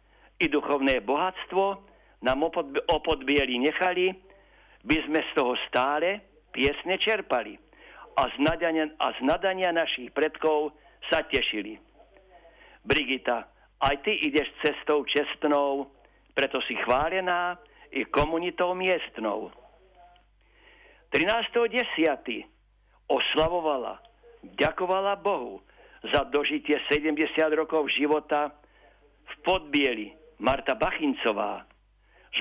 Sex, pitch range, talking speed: male, 140-180 Hz, 95 wpm